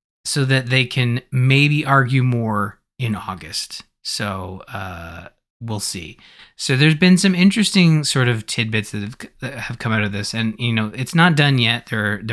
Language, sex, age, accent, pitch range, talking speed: English, male, 20-39, American, 105-125 Hz, 180 wpm